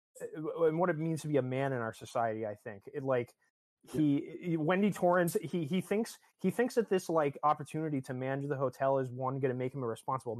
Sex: male